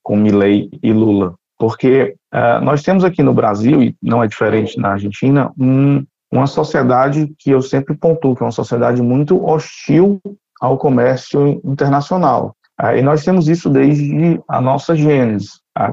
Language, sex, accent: Portuguese, male, Brazilian